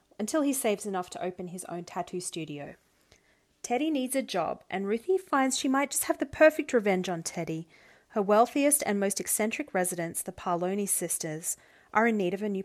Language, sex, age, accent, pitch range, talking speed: English, female, 30-49, Australian, 180-230 Hz, 195 wpm